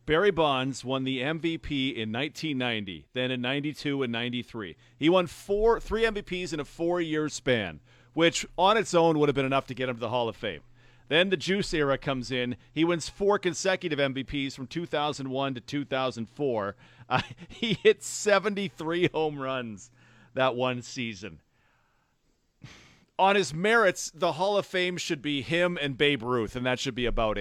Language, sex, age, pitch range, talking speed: English, male, 40-59, 130-175 Hz, 175 wpm